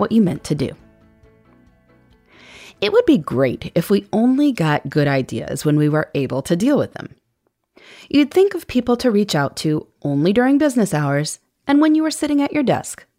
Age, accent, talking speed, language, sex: 30-49, American, 195 wpm, English, female